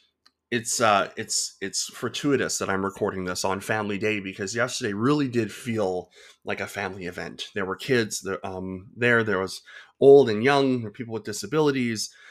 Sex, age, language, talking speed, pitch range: male, 20-39, English, 170 wpm, 95-120 Hz